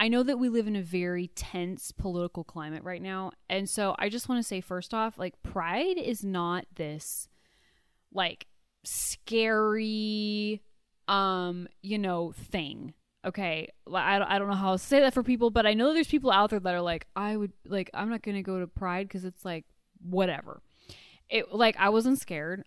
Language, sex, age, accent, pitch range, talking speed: English, female, 10-29, American, 185-230 Hz, 195 wpm